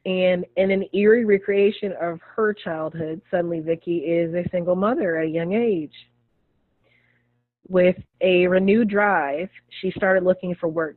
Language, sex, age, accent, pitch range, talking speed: English, female, 20-39, American, 165-200 Hz, 150 wpm